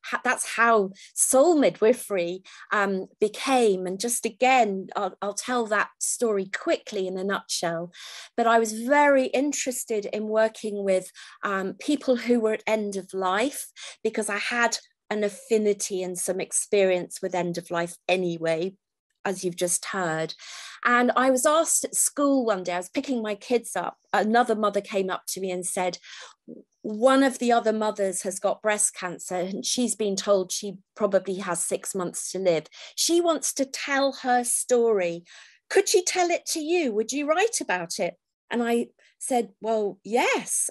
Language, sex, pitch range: English, female, 190-245 Hz